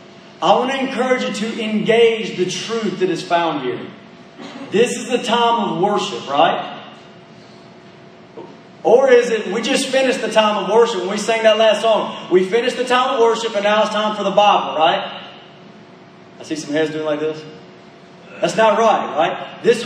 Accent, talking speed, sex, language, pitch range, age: American, 185 wpm, male, English, 200-260 Hz, 30-49